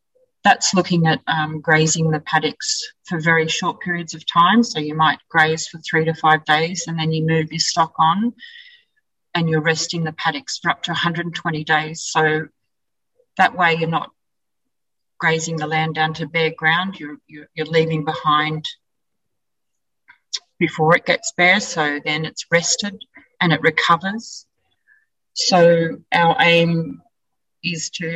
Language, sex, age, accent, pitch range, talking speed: English, female, 40-59, Australian, 155-175 Hz, 155 wpm